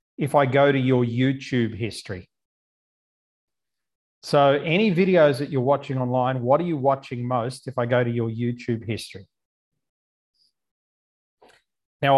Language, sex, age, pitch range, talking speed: English, male, 40-59, 125-145 Hz, 135 wpm